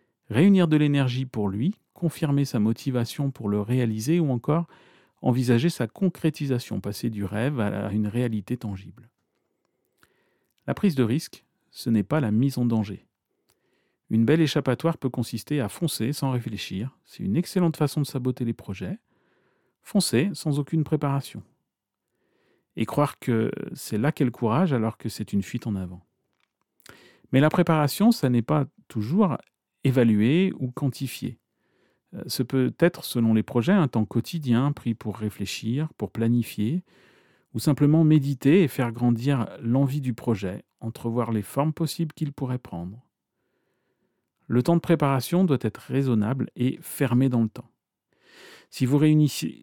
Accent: French